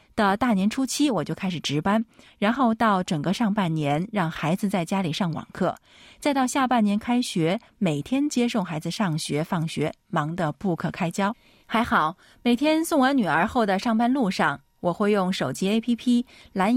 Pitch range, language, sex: 170-235 Hz, Chinese, female